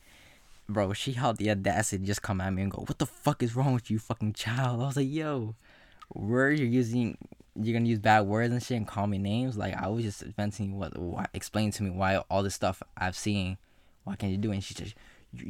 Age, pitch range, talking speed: 20-39, 95-115 Hz, 250 wpm